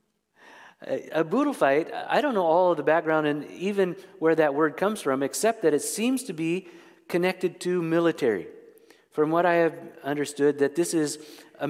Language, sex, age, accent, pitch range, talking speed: English, male, 50-69, American, 145-185 Hz, 180 wpm